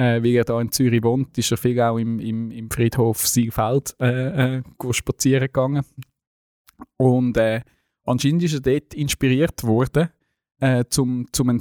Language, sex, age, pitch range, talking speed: German, male, 20-39, 110-135 Hz, 155 wpm